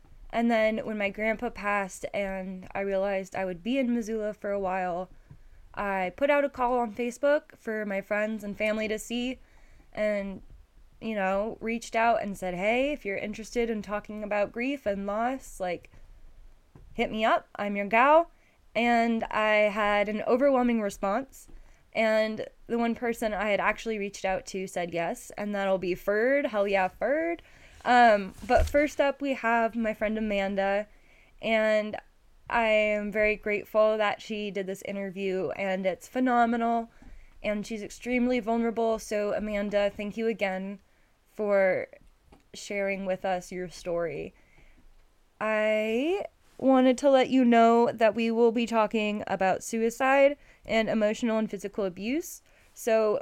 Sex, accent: female, American